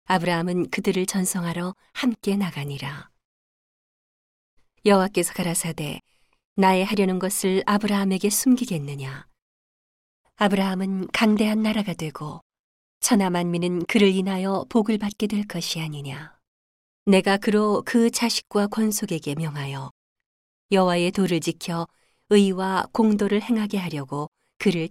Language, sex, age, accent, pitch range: Korean, female, 40-59, native, 170-205 Hz